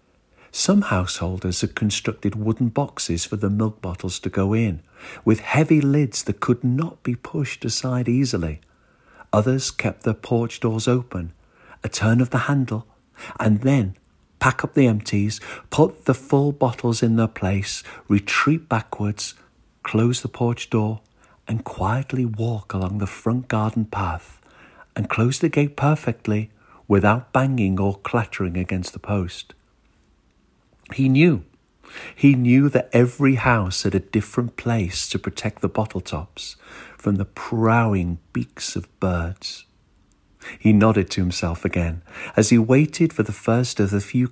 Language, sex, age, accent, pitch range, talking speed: English, male, 50-69, British, 95-125 Hz, 150 wpm